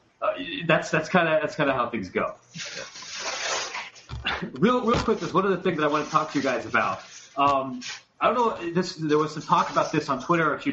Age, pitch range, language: 30-49, 125-160 Hz, English